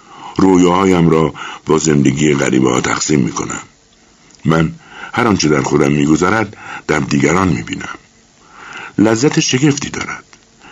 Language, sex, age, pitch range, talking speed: Persian, male, 60-79, 80-115 Hz, 105 wpm